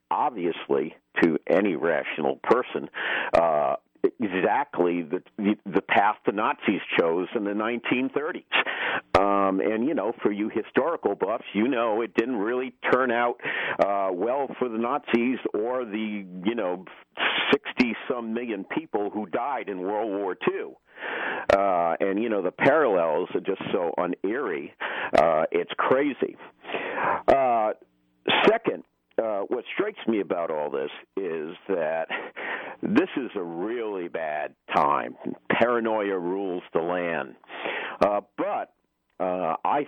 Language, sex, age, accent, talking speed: English, male, 50-69, American, 130 wpm